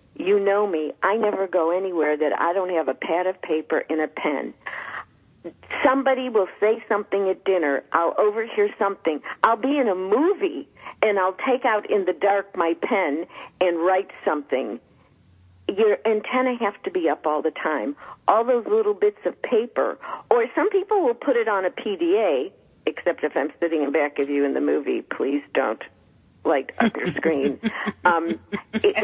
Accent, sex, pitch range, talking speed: American, female, 175-275 Hz, 180 wpm